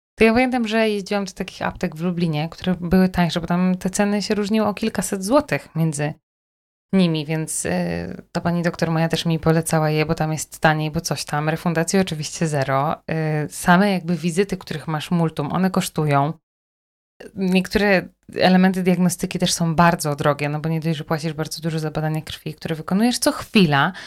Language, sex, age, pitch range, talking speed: Polish, female, 20-39, 155-190 Hz, 185 wpm